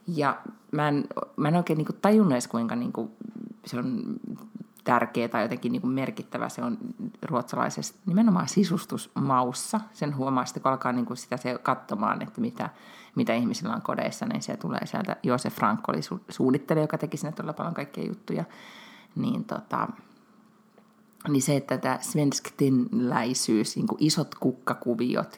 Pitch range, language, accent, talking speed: 135-220 Hz, Finnish, native, 150 wpm